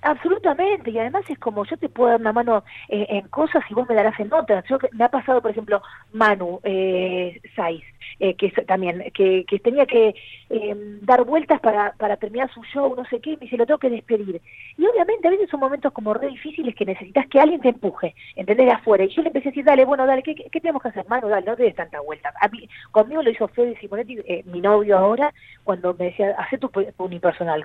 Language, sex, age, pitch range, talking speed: Spanish, female, 30-49, 205-295 Hz, 240 wpm